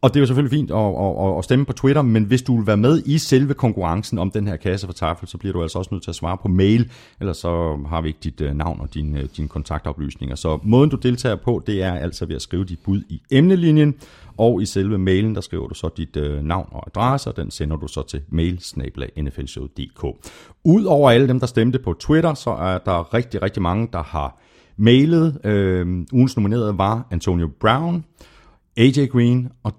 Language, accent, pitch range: Danish, native, 85-115 Hz